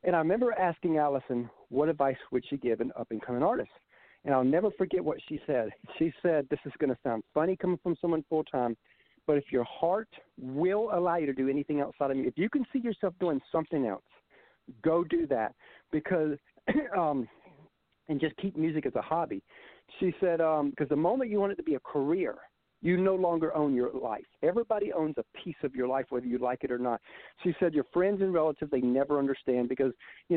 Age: 50-69